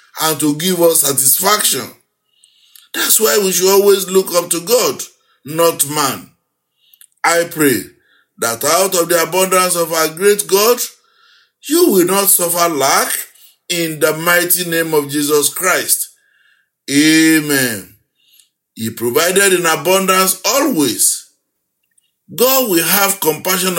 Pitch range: 165-225 Hz